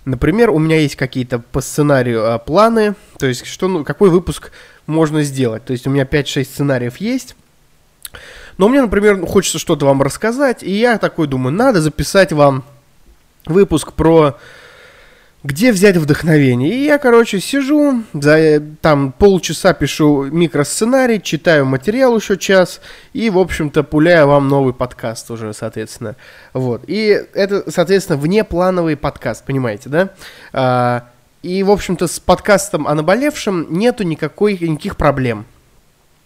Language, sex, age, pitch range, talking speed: Russian, male, 20-39, 135-195 Hz, 130 wpm